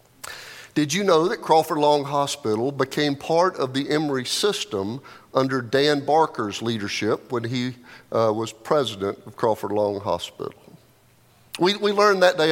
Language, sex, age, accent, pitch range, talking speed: English, male, 50-69, American, 115-155 Hz, 150 wpm